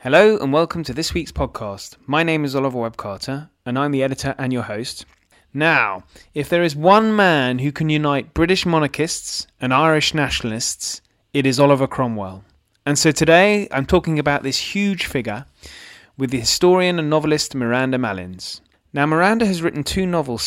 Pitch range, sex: 115-155 Hz, male